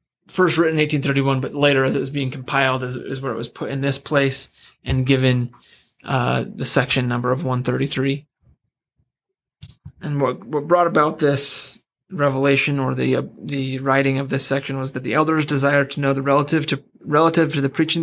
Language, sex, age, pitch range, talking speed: English, male, 20-39, 130-145 Hz, 200 wpm